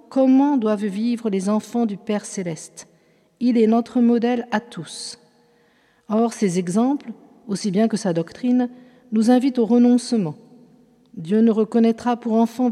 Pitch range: 205-245 Hz